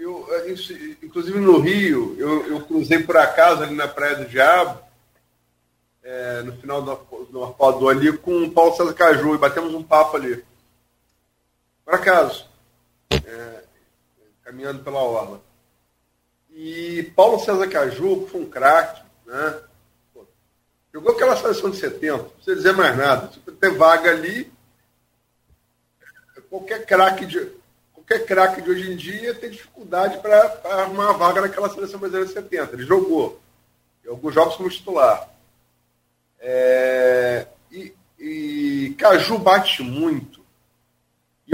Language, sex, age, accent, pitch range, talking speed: Portuguese, male, 40-59, Brazilian, 125-200 Hz, 135 wpm